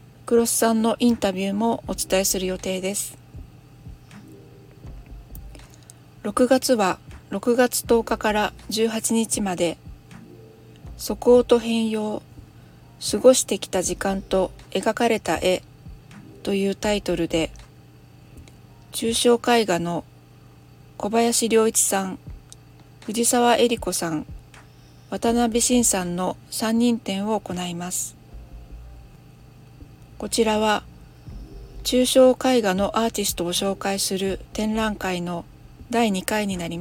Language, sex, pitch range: Japanese, female, 180-230 Hz